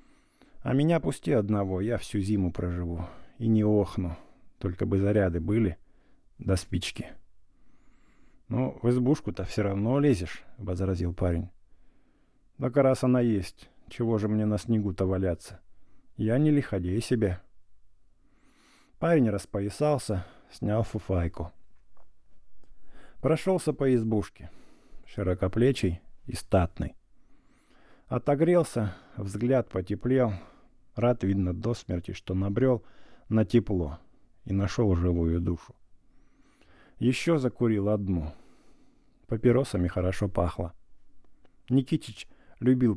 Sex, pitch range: male, 95-120 Hz